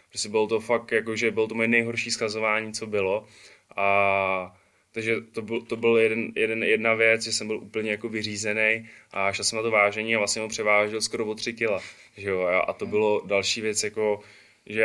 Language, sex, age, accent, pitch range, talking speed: Czech, male, 20-39, native, 105-115 Hz, 195 wpm